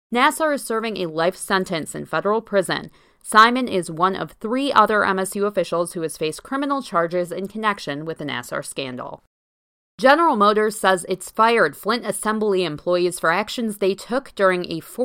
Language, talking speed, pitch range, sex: English, 165 wpm, 170-225 Hz, female